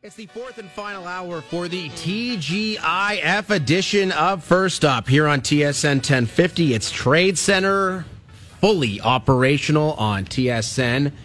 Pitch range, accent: 115-160 Hz, American